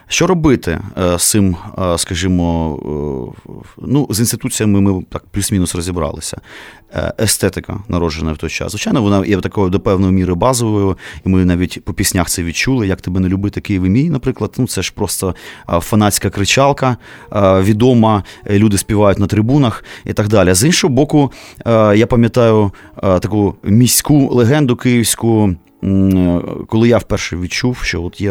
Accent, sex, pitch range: native, male, 90-115 Hz